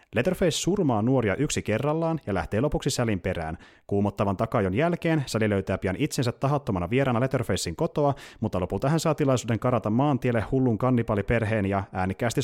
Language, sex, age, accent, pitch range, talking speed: Finnish, male, 30-49, native, 100-135 Hz, 155 wpm